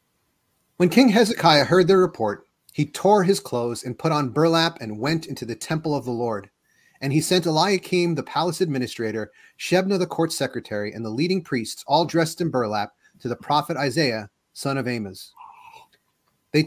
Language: English